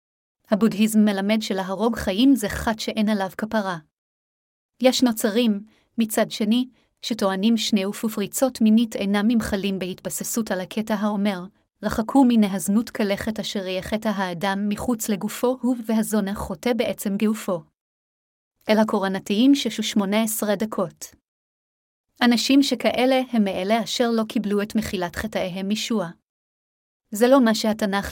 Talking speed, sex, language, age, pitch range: 130 wpm, female, Hebrew, 30-49, 200-230 Hz